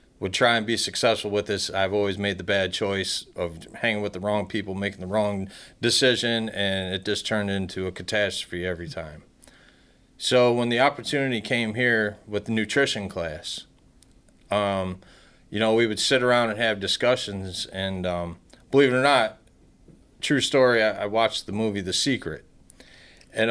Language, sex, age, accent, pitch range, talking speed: English, male, 30-49, American, 95-115 Hz, 175 wpm